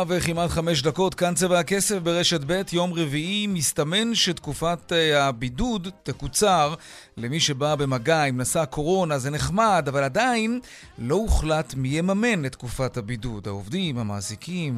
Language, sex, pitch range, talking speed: Hebrew, male, 140-180 Hz, 135 wpm